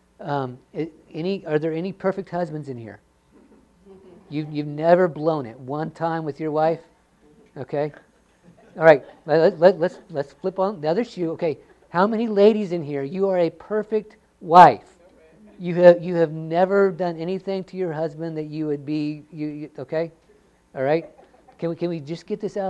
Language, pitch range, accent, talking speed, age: English, 135-175 Hz, American, 180 wpm, 50-69